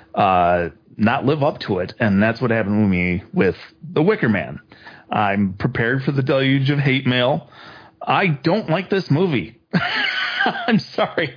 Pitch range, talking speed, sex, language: 100-135 Hz, 165 wpm, male, English